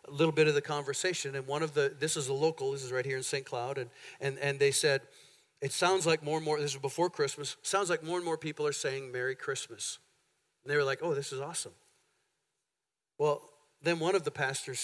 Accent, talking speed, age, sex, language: American, 240 wpm, 50-69, male, English